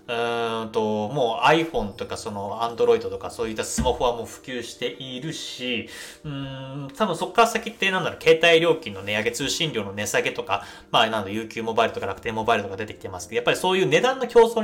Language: Japanese